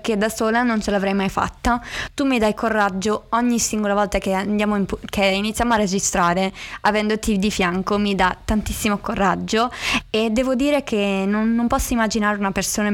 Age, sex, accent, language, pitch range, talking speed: 20-39, female, native, Italian, 195-225 Hz, 180 wpm